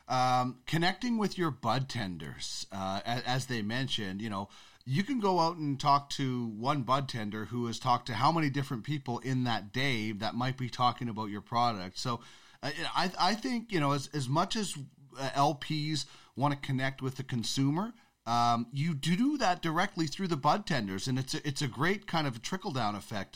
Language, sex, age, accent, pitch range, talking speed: English, male, 30-49, American, 125-160 Hz, 200 wpm